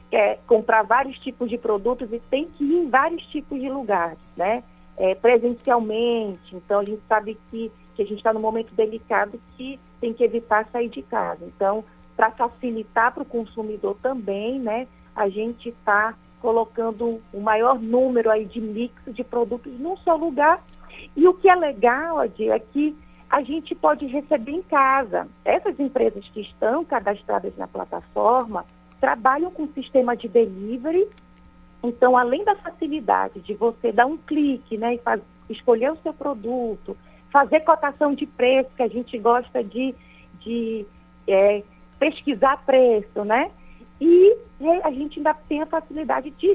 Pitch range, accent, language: 225-305 Hz, Brazilian, Portuguese